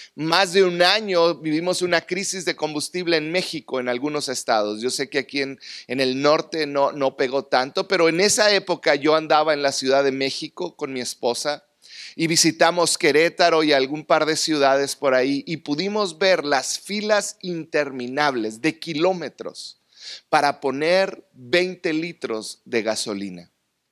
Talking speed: 160 wpm